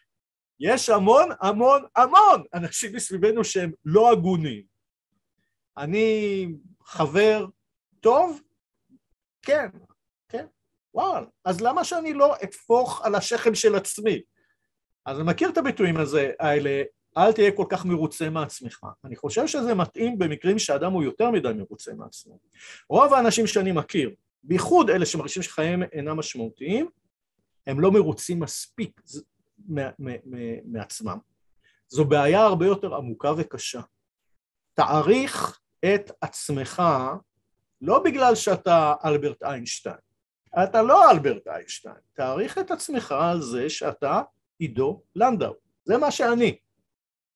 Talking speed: 115 wpm